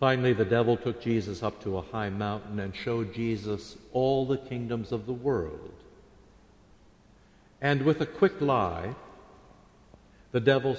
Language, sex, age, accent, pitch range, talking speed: English, male, 60-79, American, 100-140 Hz, 145 wpm